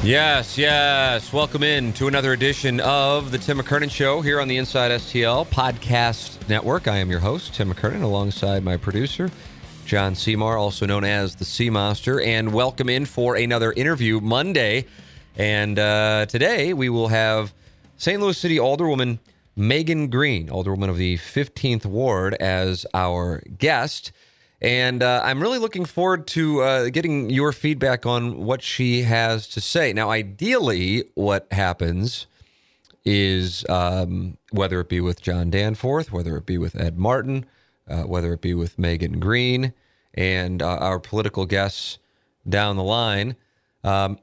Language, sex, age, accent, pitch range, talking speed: English, male, 30-49, American, 95-130 Hz, 155 wpm